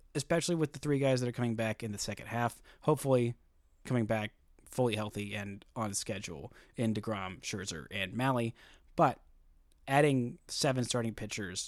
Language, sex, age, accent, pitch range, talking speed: English, male, 30-49, American, 100-140 Hz, 160 wpm